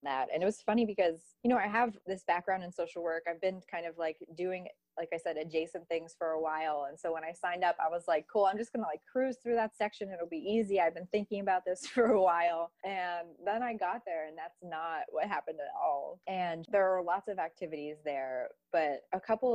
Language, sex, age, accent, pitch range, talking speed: English, female, 20-39, American, 155-200 Hz, 250 wpm